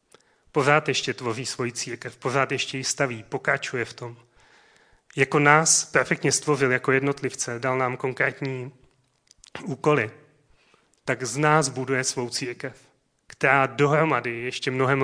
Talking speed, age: 130 wpm, 30-49